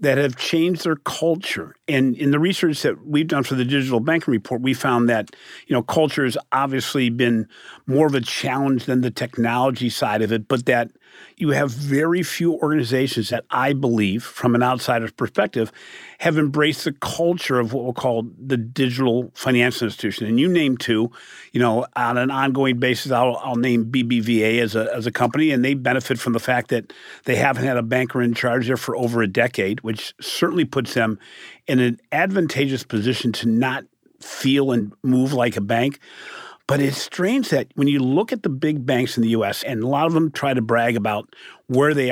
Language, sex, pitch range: English, male, 120-140 Hz